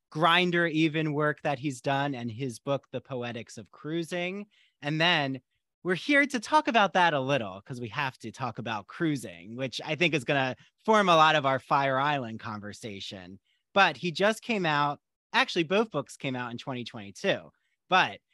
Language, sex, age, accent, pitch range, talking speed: English, male, 30-49, American, 135-175 Hz, 185 wpm